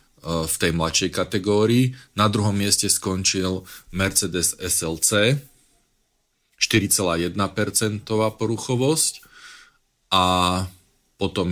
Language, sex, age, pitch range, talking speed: Slovak, male, 40-59, 85-100 Hz, 75 wpm